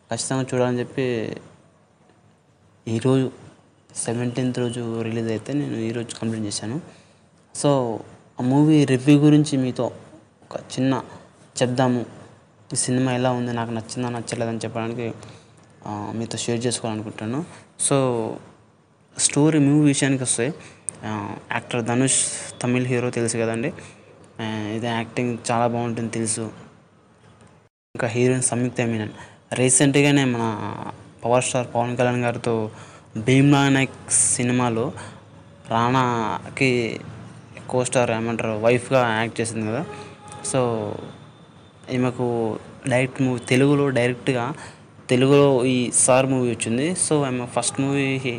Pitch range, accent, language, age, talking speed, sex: 115-135 Hz, native, Telugu, 20-39, 105 wpm, male